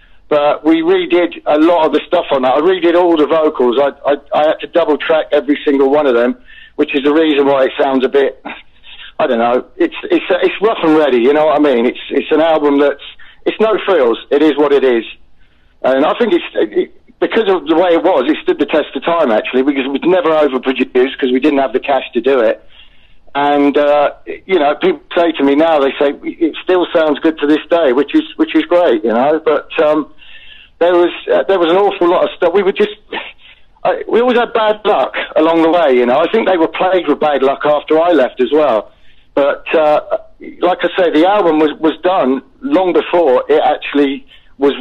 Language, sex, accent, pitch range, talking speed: English, male, British, 145-195 Hz, 230 wpm